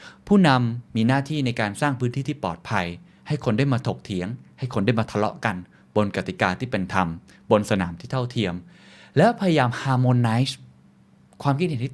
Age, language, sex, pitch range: 20-39, Thai, male, 105-145 Hz